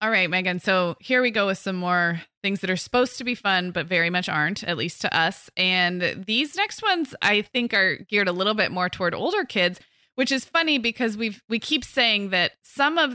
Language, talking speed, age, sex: English, 235 wpm, 20-39, female